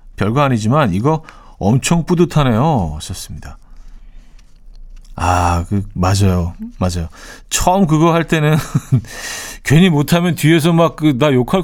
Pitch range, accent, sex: 95-155 Hz, native, male